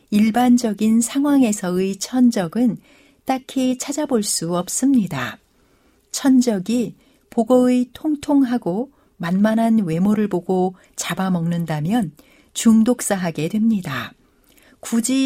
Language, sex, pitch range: Korean, female, 185-255 Hz